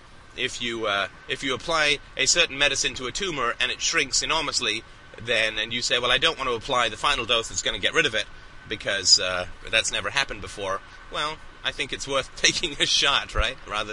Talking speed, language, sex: 225 wpm, English, male